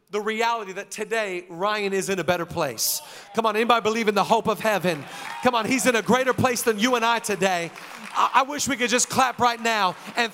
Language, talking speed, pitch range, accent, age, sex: English, 240 wpm, 215-255 Hz, American, 40-59, male